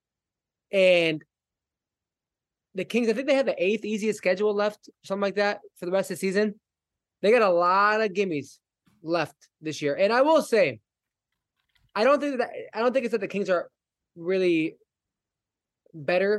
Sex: male